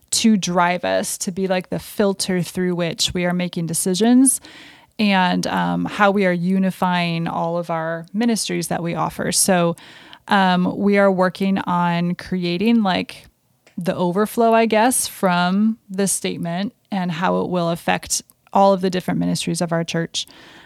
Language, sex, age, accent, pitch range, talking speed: English, female, 20-39, American, 175-205 Hz, 160 wpm